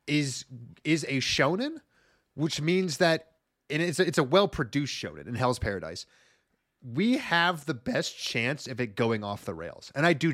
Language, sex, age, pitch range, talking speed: English, male, 30-49, 120-165 Hz, 175 wpm